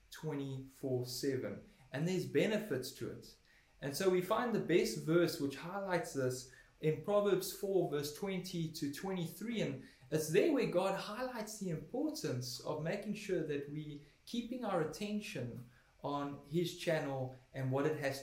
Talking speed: 155 wpm